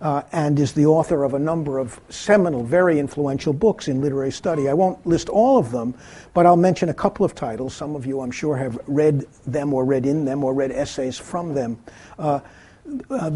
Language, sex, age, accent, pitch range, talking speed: English, male, 50-69, American, 130-175 Hz, 210 wpm